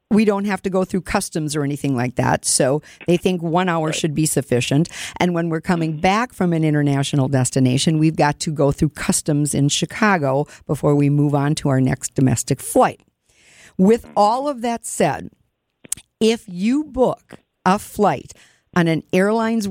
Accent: American